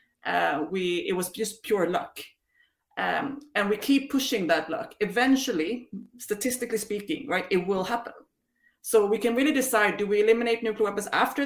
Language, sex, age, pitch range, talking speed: English, female, 30-49, 195-245 Hz, 170 wpm